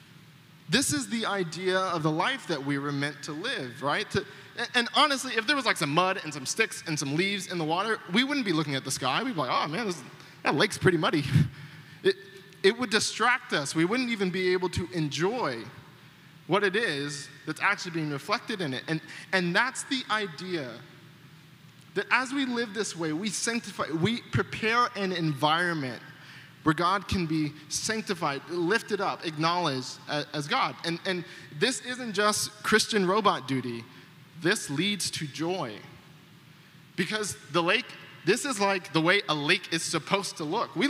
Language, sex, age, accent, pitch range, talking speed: English, male, 20-39, American, 150-210 Hz, 180 wpm